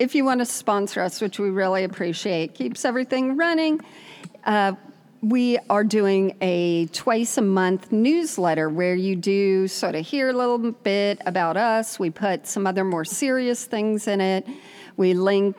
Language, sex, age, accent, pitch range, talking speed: English, female, 40-59, American, 190-245 Hz, 165 wpm